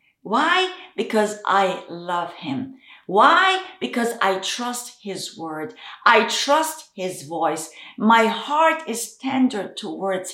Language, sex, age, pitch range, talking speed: English, female, 50-69, 195-280 Hz, 115 wpm